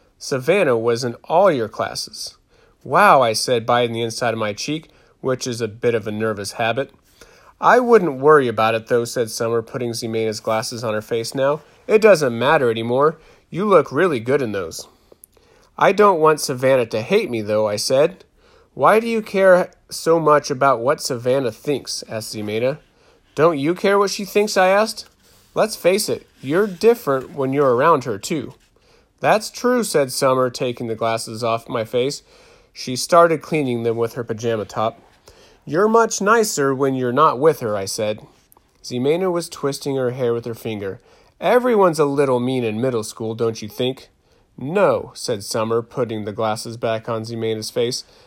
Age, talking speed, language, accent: 30-49, 180 wpm, English, American